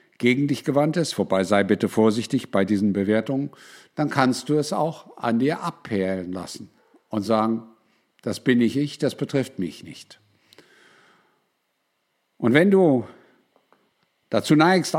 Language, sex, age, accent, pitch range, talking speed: German, male, 50-69, German, 110-140 Hz, 140 wpm